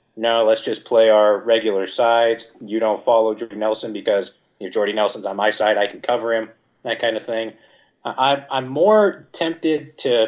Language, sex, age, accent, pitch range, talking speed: English, male, 30-49, American, 105-120 Hz, 195 wpm